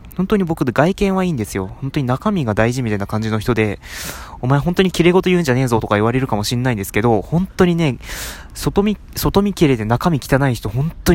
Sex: male